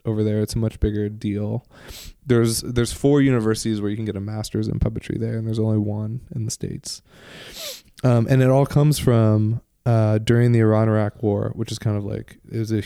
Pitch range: 105-115 Hz